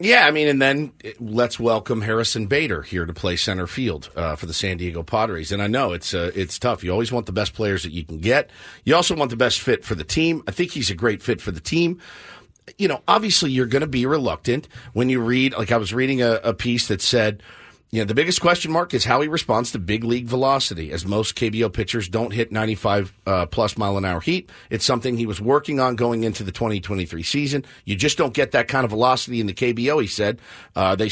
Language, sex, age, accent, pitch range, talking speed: English, male, 50-69, American, 105-135 Hz, 245 wpm